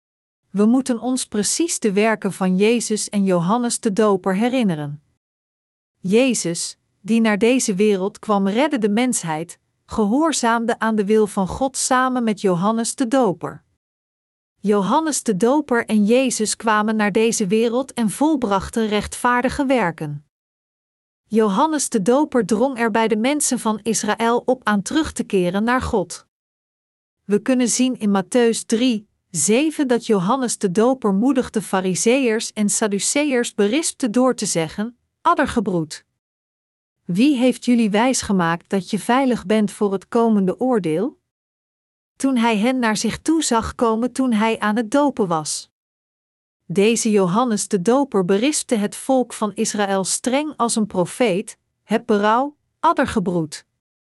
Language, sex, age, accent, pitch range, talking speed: Dutch, female, 50-69, Dutch, 205-250 Hz, 140 wpm